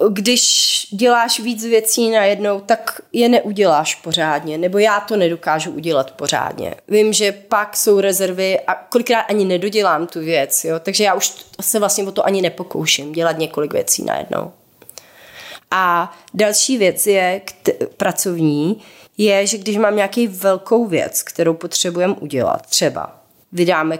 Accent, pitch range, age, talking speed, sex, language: native, 155-205 Hz, 30-49, 140 wpm, female, Czech